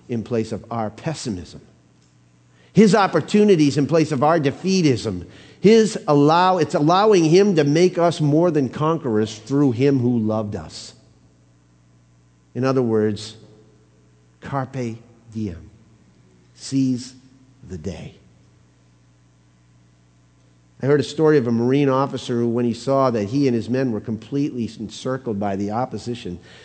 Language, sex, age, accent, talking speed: English, male, 50-69, American, 135 wpm